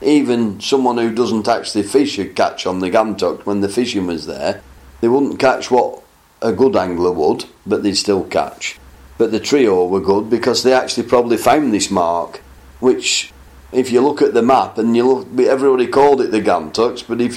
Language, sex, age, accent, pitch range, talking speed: English, male, 40-59, British, 105-130 Hz, 195 wpm